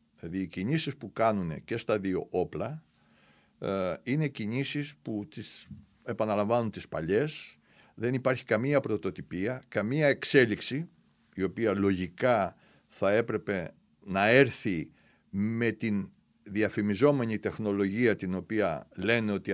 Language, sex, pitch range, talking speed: Greek, male, 100-170 Hz, 115 wpm